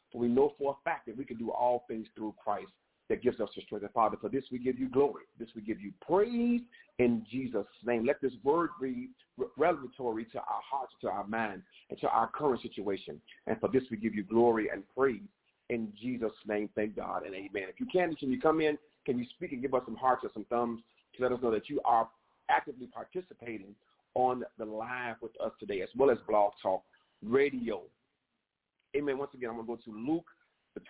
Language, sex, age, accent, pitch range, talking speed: English, male, 40-59, American, 115-145 Hz, 225 wpm